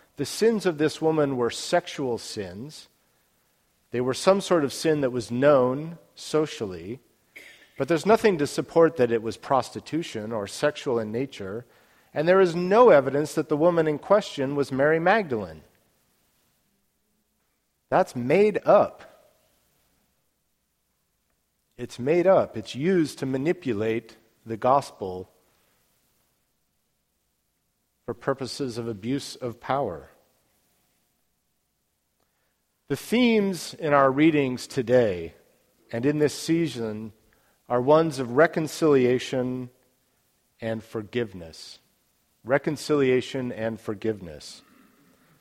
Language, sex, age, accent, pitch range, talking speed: English, male, 50-69, American, 115-165 Hz, 105 wpm